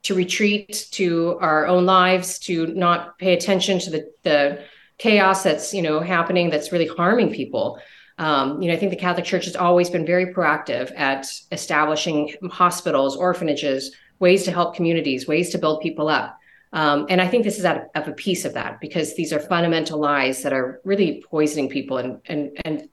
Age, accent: 30-49, American